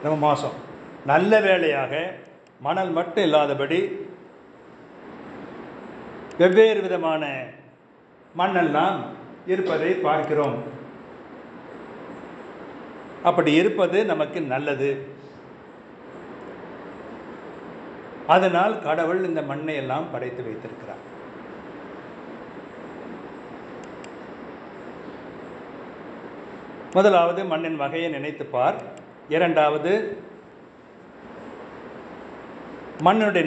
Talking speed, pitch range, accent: 50 wpm, 140-175 Hz, native